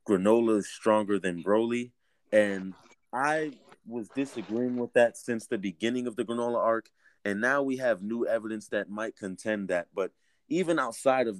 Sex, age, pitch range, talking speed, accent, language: male, 30-49, 100-130 Hz, 170 wpm, American, English